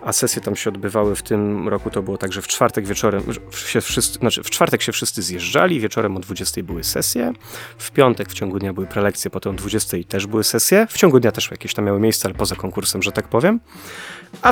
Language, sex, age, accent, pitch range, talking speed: Polish, male, 30-49, native, 100-130 Hz, 235 wpm